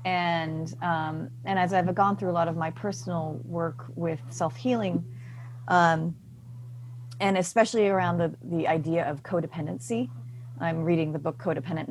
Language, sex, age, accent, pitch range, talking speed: English, female, 30-49, American, 125-170 Hz, 145 wpm